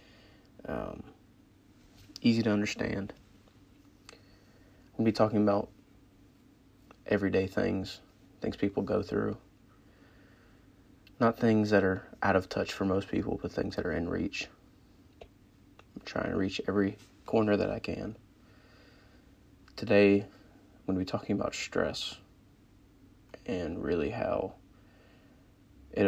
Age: 30-49